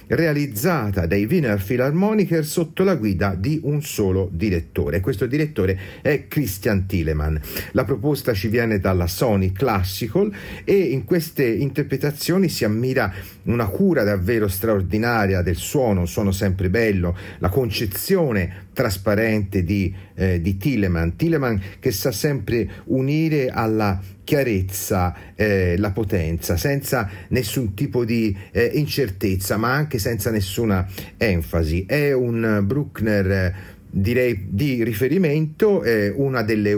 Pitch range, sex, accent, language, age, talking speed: 95-130 Hz, male, native, Italian, 40-59, 125 wpm